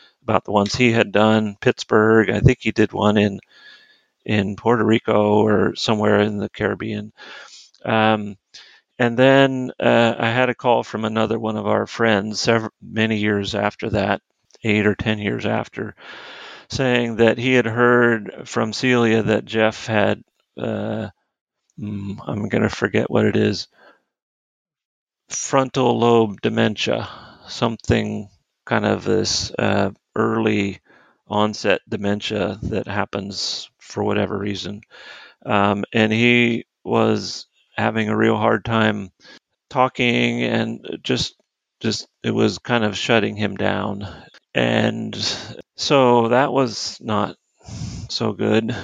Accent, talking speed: American, 130 wpm